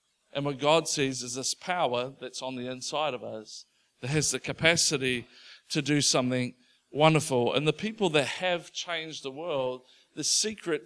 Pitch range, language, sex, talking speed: 140-180 Hz, English, male, 170 wpm